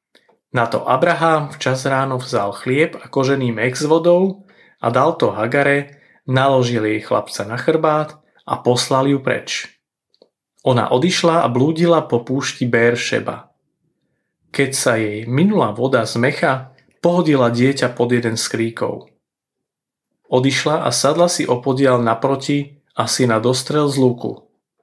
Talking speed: 135 wpm